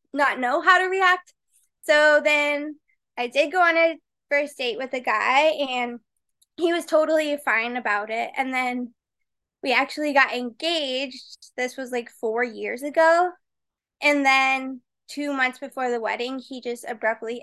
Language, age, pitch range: English, 20-39, 240-290 Hz